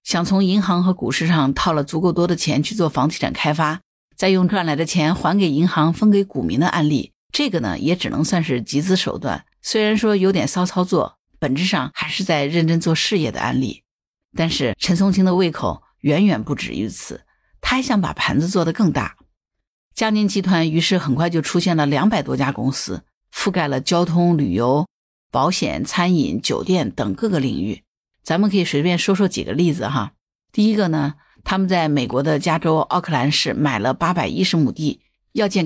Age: 50-69